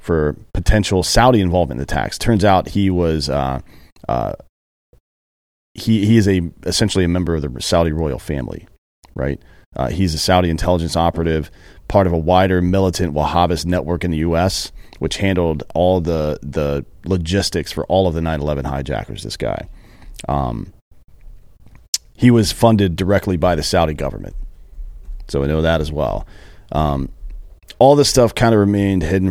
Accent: American